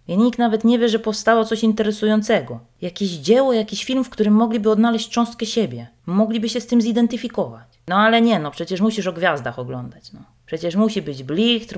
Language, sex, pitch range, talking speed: Polish, female, 155-210 Hz, 195 wpm